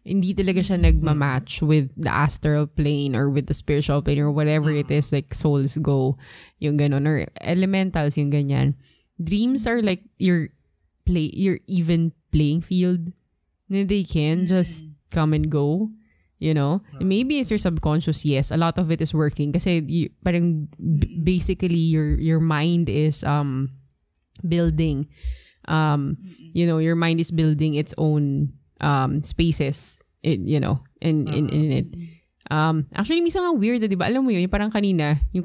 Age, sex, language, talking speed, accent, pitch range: 20-39, female, Filipino, 155 wpm, native, 145-175 Hz